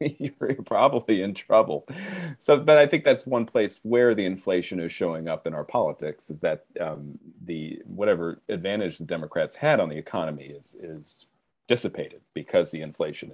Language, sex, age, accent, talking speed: English, male, 40-59, American, 170 wpm